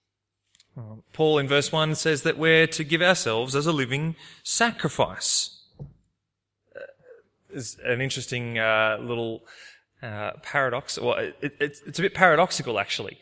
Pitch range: 115-160 Hz